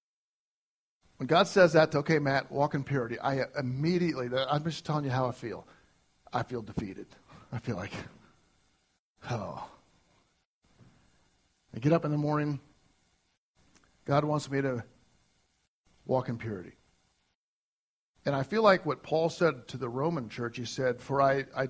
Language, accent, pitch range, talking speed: English, American, 130-165 Hz, 150 wpm